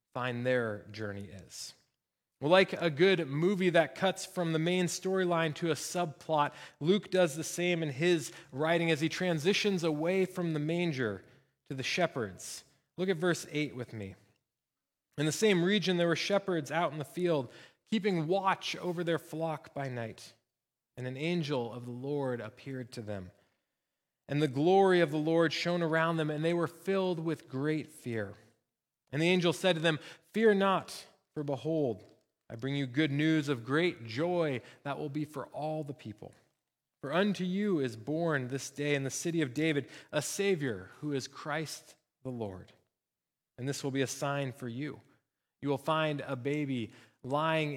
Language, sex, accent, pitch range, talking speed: English, male, American, 130-170 Hz, 180 wpm